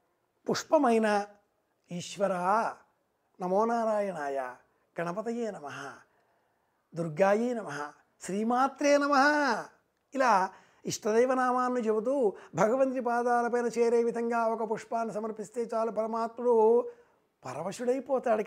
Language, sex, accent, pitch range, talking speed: Telugu, male, native, 195-240 Hz, 70 wpm